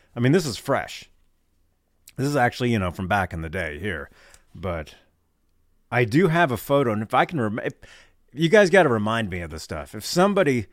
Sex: male